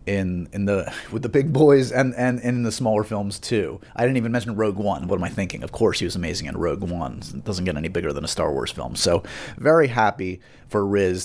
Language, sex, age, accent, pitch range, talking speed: English, male, 30-49, American, 95-120 Hz, 255 wpm